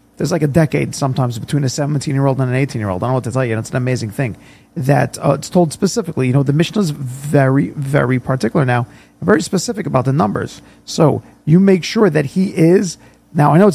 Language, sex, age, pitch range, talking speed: English, male, 40-59, 130-175 Hz, 225 wpm